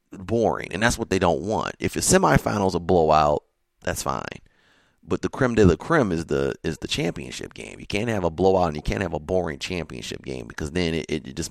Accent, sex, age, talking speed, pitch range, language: American, male, 30-49, 230 wpm, 80-100 Hz, English